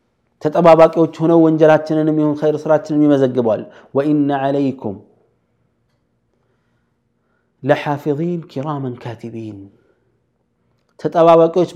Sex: male